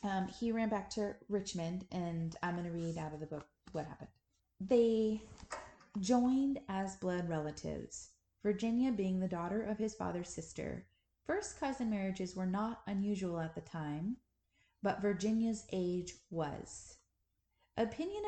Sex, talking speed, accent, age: female, 145 wpm, American, 30-49